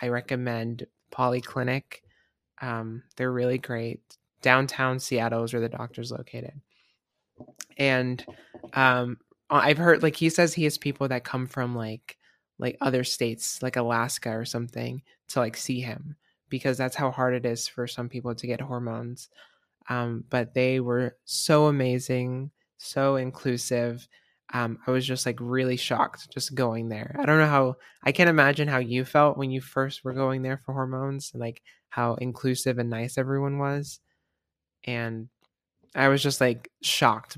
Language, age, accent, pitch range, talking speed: English, 20-39, American, 120-140 Hz, 160 wpm